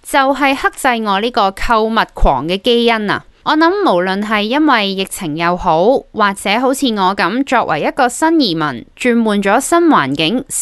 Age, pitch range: 20-39, 185-270 Hz